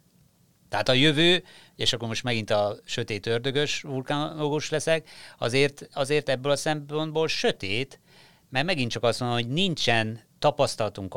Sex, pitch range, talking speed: male, 110-145 Hz, 135 wpm